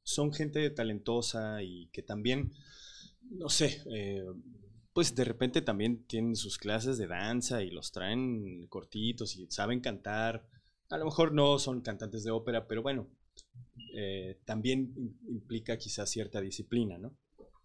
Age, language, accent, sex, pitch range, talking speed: 20-39, Spanish, Mexican, male, 100-125 Hz, 145 wpm